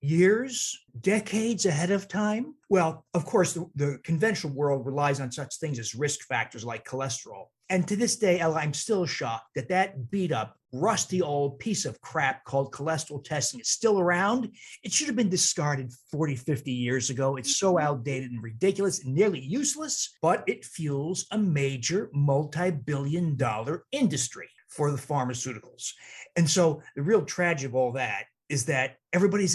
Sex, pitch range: male, 135-190 Hz